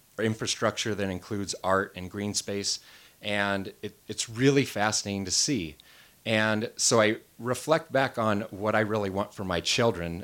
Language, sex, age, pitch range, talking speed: English, male, 30-49, 90-110 Hz, 150 wpm